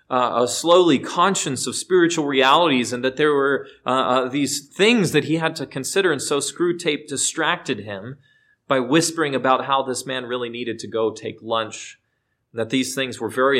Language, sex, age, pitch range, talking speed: English, male, 30-49, 105-135 Hz, 185 wpm